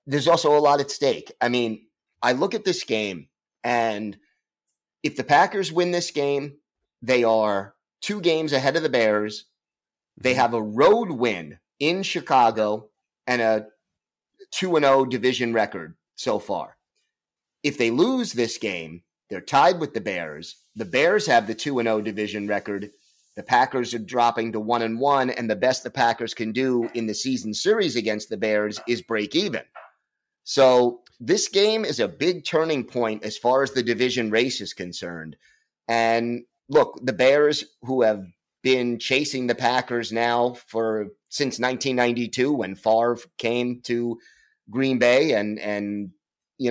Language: English